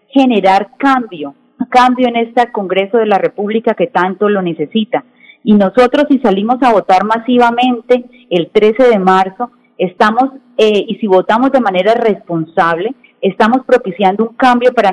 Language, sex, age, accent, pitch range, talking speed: Spanish, female, 30-49, Colombian, 190-245 Hz, 150 wpm